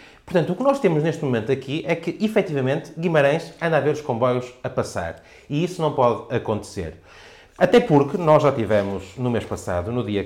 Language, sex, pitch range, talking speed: Portuguese, male, 125-180 Hz, 200 wpm